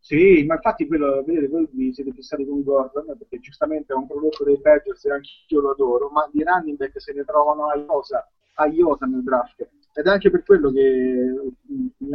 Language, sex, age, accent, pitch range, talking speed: Italian, male, 30-49, native, 130-205 Hz, 200 wpm